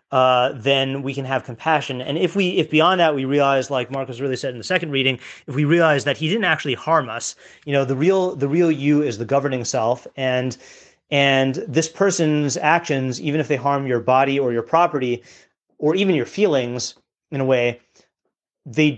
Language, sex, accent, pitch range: English, male, American, 130-155 Hz